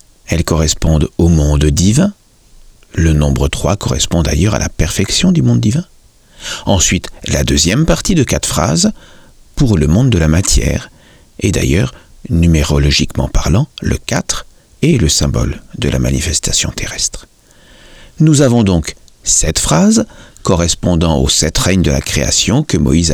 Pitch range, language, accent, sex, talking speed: 80-120 Hz, French, French, male, 145 wpm